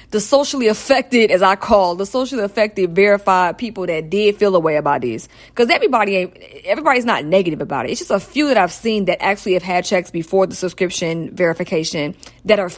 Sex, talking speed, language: female, 205 wpm, English